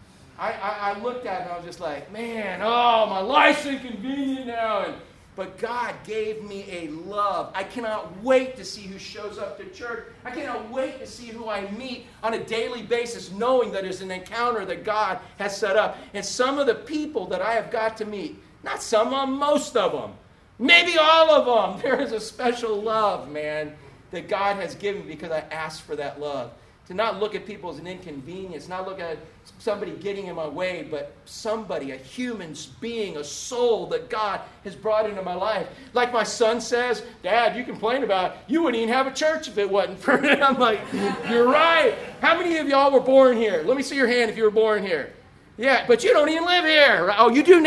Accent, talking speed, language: American, 230 wpm, English